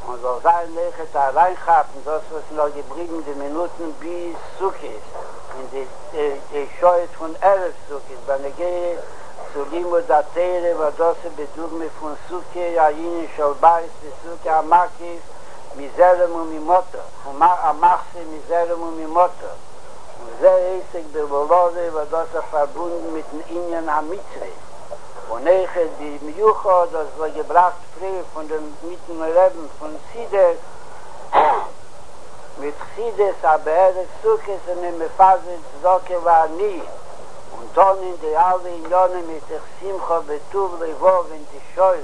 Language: Hebrew